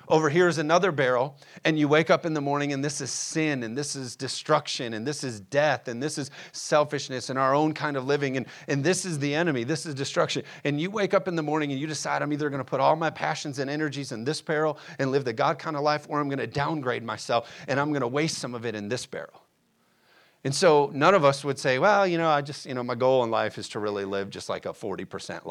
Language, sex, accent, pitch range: English, male, American, 130-160 Hz